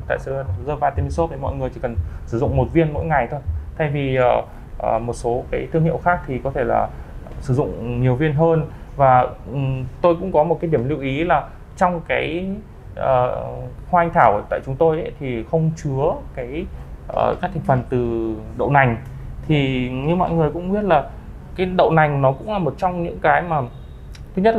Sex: male